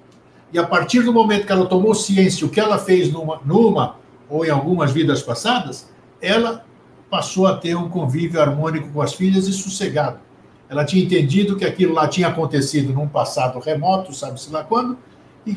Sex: male